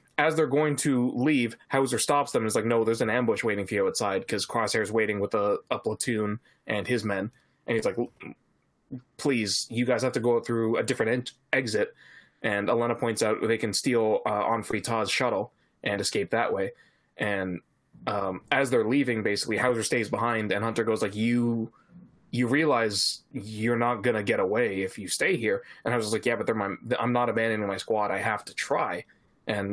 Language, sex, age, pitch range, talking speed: English, male, 20-39, 105-130 Hz, 200 wpm